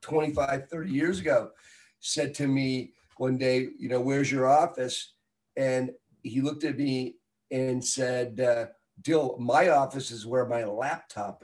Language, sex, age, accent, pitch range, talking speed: English, male, 50-69, American, 120-140 Hz, 150 wpm